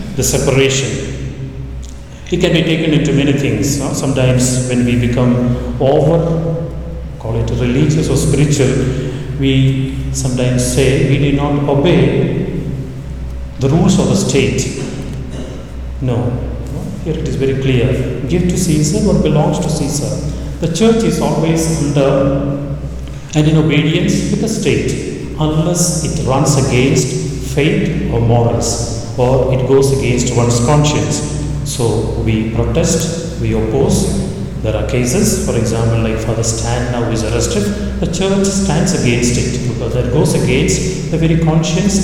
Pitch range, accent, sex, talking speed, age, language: 125-160 Hz, Indian, male, 140 wpm, 40-59, English